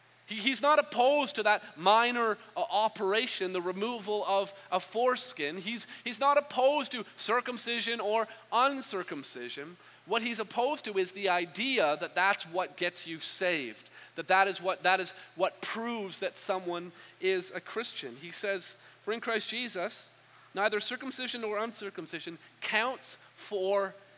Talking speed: 140 wpm